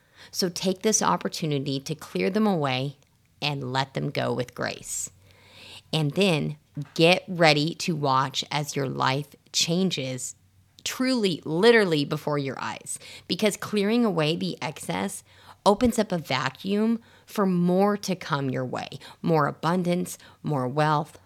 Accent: American